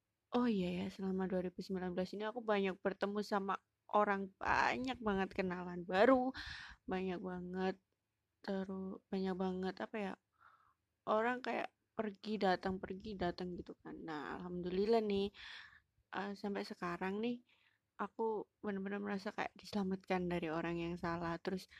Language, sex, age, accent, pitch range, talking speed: Indonesian, female, 20-39, native, 180-205 Hz, 130 wpm